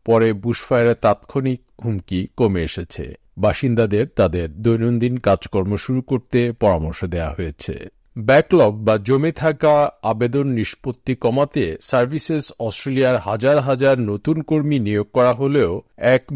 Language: Bengali